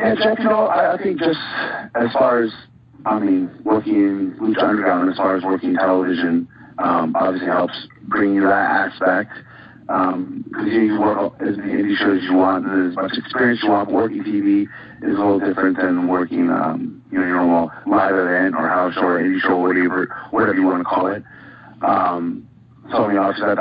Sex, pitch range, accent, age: male, 90-125 Hz, American, 40-59